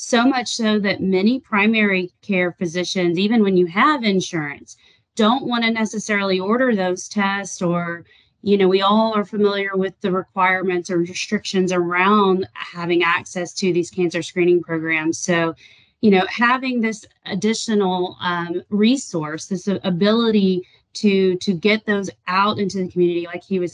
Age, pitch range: 30-49, 180-205 Hz